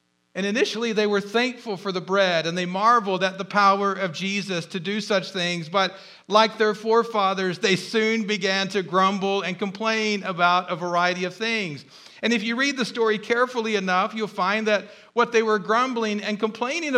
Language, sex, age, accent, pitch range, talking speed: English, male, 50-69, American, 190-240 Hz, 185 wpm